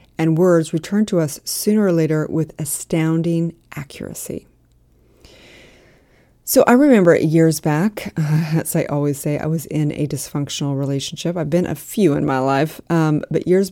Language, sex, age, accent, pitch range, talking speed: English, female, 30-49, American, 145-165 Hz, 160 wpm